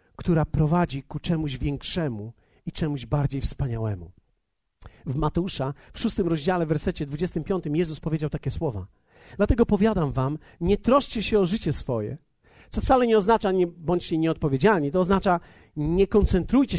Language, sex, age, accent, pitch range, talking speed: Polish, male, 40-59, native, 155-230 Hz, 145 wpm